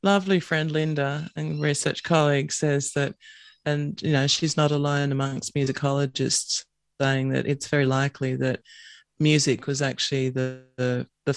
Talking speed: 150 wpm